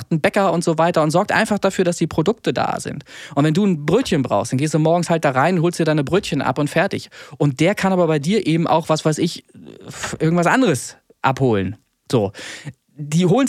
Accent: German